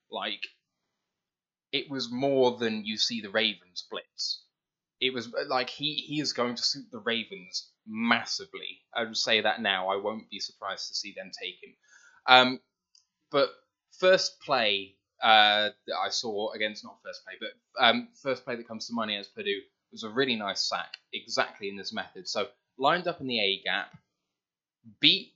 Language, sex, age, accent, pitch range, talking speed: English, male, 10-29, British, 110-155 Hz, 175 wpm